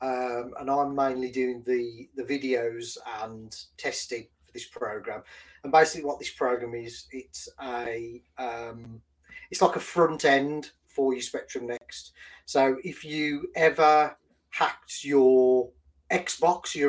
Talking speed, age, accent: 130 wpm, 30-49, British